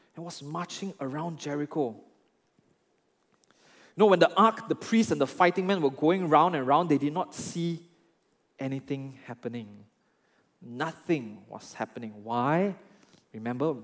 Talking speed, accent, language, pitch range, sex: 135 wpm, Malaysian, English, 130-185 Hz, male